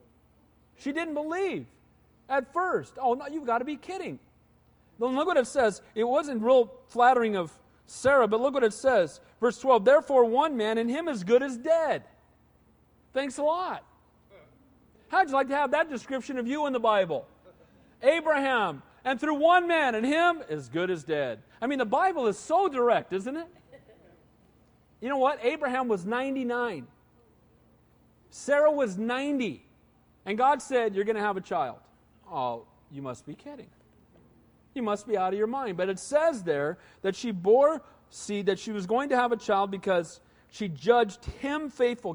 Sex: male